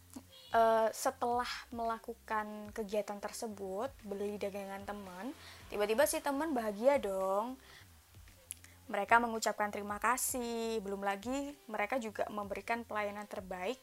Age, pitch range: 20-39, 190-230 Hz